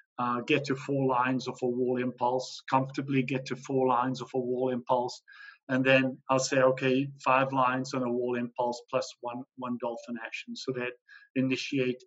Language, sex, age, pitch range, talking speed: English, male, 50-69, 125-135 Hz, 185 wpm